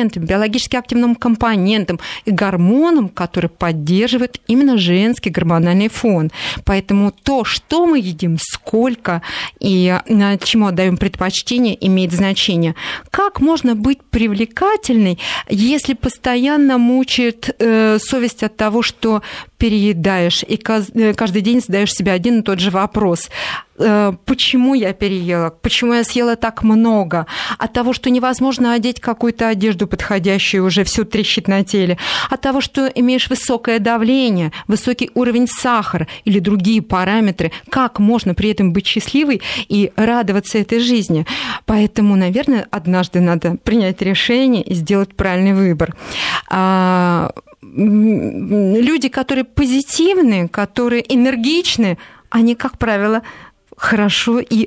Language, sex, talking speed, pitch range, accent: Russian, female, 120 wpm, 190-245 Hz, native